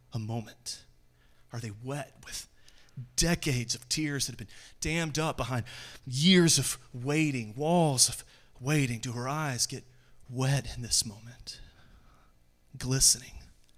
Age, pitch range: 30-49, 110-150 Hz